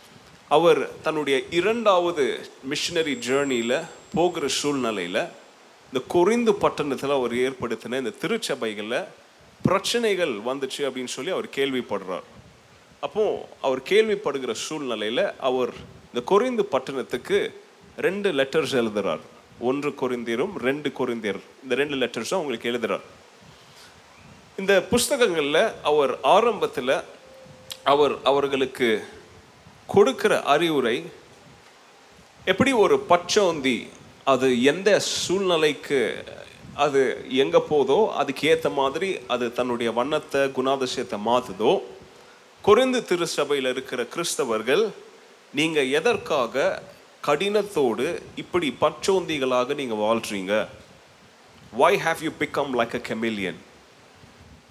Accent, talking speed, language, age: native, 90 wpm, Tamil, 30-49